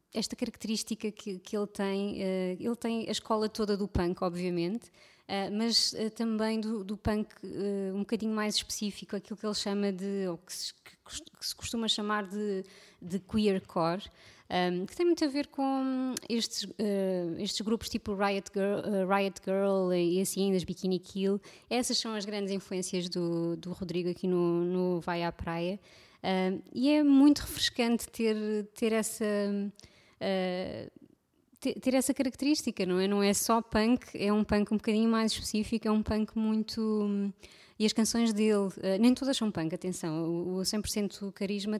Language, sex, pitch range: Portuguese, female, 190-220 Hz